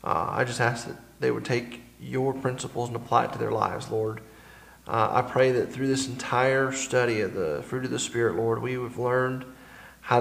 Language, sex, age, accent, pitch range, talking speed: English, male, 40-59, American, 115-130 Hz, 210 wpm